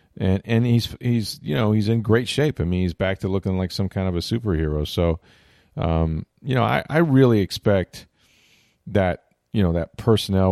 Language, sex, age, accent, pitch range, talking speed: English, male, 40-59, American, 90-110 Hz, 200 wpm